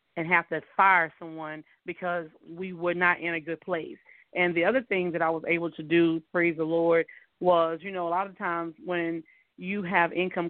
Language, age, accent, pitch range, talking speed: English, 30-49, American, 165-185 Hz, 210 wpm